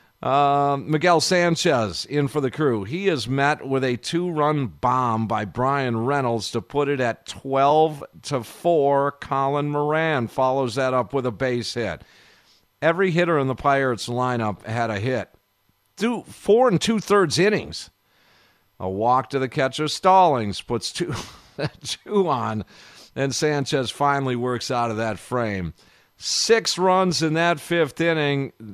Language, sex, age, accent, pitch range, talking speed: English, male, 50-69, American, 115-150 Hz, 145 wpm